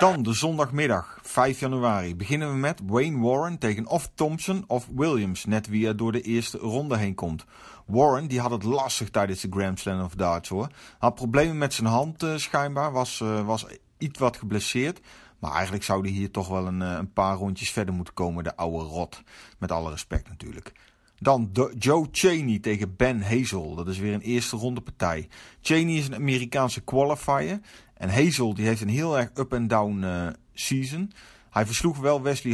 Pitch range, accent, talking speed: 105-140 Hz, Dutch, 190 wpm